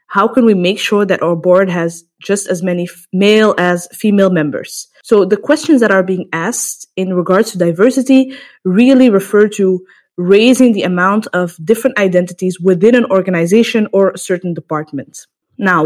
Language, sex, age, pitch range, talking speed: English, female, 20-39, 180-235 Hz, 165 wpm